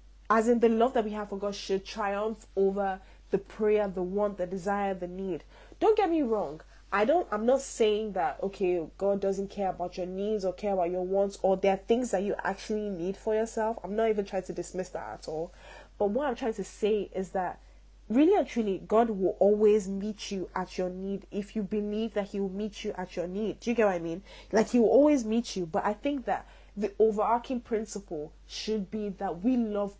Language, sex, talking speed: English, female, 230 wpm